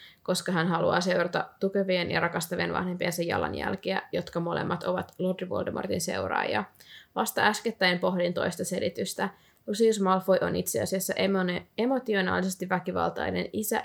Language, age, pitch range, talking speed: Finnish, 20-39, 175-190 Hz, 125 wpm